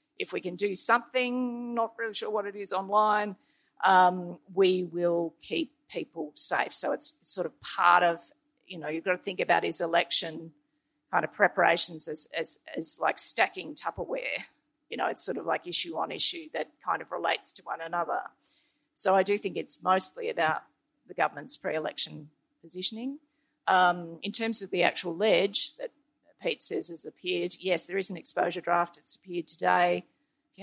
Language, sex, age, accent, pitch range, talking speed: English, female, 40-59, Australian, 170-225 Hz, 180 wpm